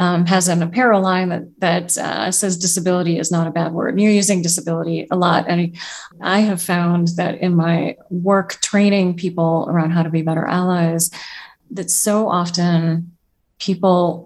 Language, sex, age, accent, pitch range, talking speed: English, female, 30-49, American, 170-205 Hz, 175 wpm